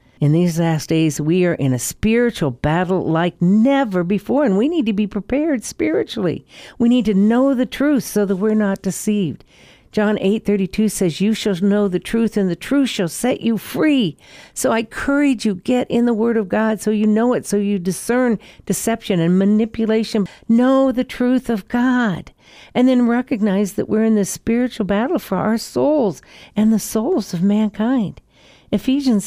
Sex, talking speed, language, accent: female, 185 wpm, English, American